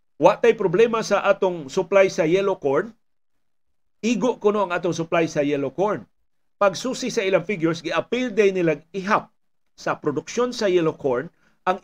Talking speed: 160 wpm